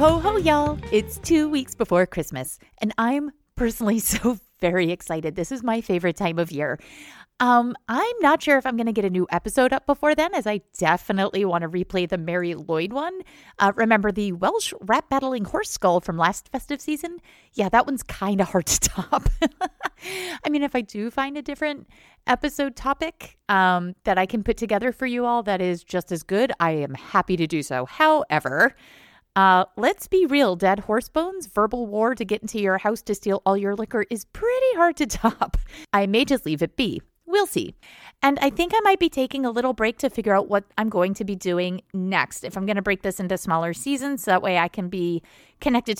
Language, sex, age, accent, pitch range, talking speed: English, female, 30-49, American, 185-275 Hz, 215 wpm